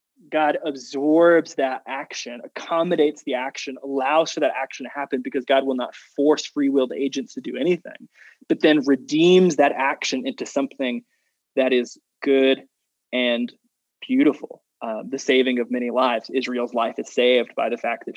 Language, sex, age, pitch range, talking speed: English, male, 20-39, 130-170 Hz, 160 wpm